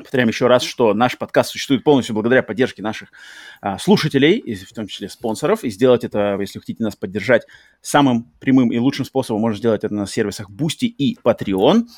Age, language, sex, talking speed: 30-49, Russian, male, 200 wpm